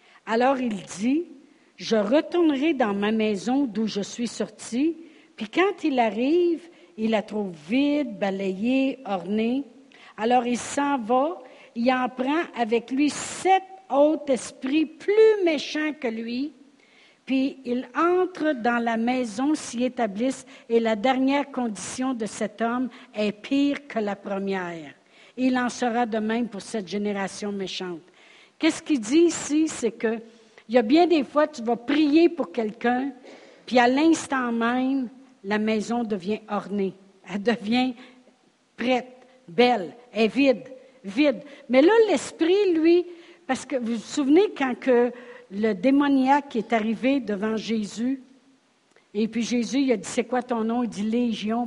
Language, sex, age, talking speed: French, female, 60-79, 150 wpm